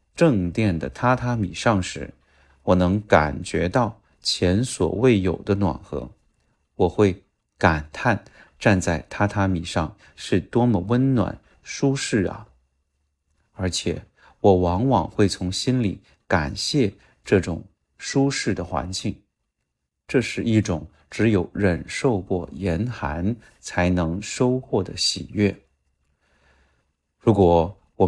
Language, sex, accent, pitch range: Chinese, male, native, 85-115 Hz